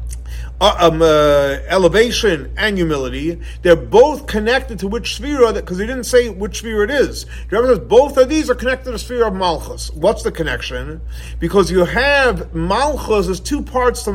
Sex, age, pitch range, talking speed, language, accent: male, 40-59, 150-215 Hz, 180 wpm, English, American